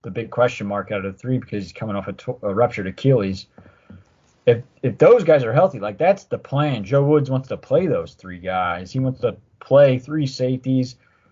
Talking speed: 215 wpm